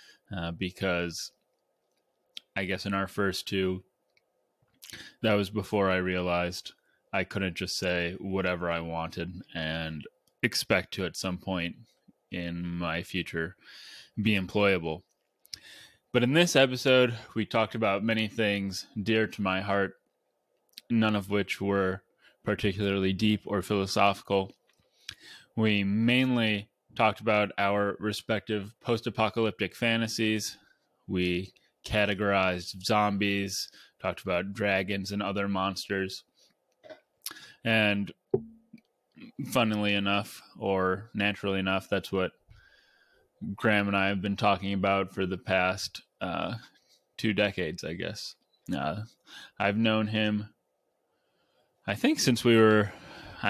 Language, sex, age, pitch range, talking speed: English, male, 20-39, 95-110 Hz, 115 wpm